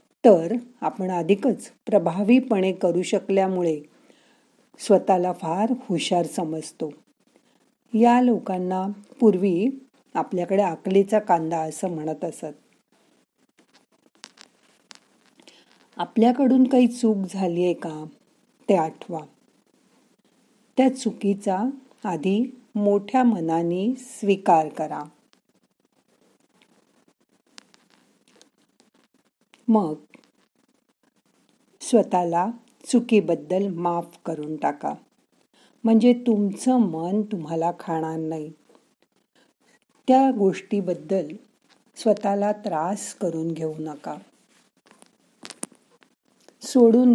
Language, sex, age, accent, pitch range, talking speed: Marathi, female, 50-69, native, 175-245 Hz, 70 wpm